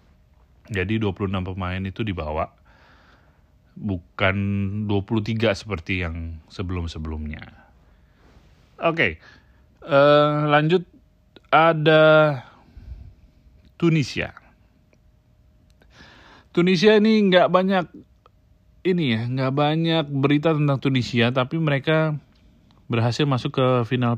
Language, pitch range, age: Indonesian, 95-130 Hz, 30-49